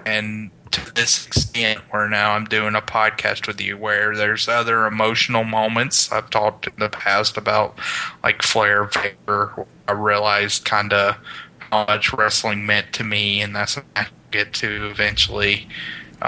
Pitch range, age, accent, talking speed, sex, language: 105-115 Hz, 20-39, American, 165 wpm, male, English